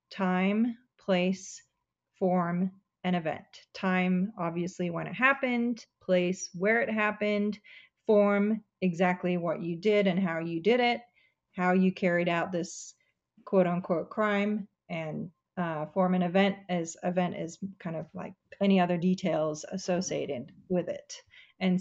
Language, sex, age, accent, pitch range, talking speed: English, female, 30-49, American, 175-205 Hz, 135 wpm